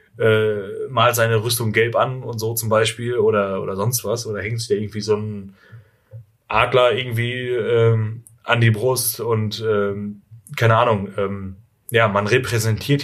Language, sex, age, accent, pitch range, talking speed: German, male, 30-49, German, 105-130 Hz, 160 wpm